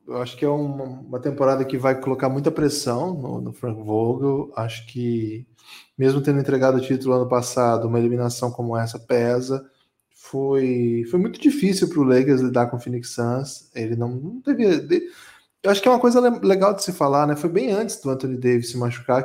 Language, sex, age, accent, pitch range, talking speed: Portuguese, male, 20-39, Brazilian, 125-145 Hz, 205 wpm